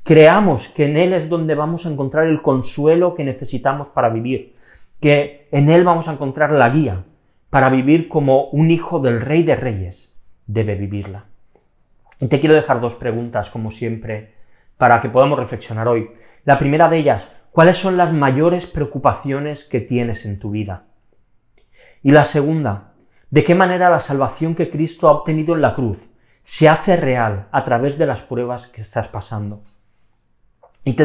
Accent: Spanish